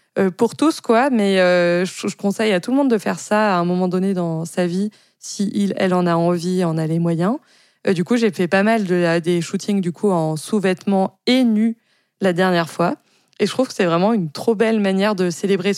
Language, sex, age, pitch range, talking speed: French, female, 20-39, 180-225 Hz, 245 wpm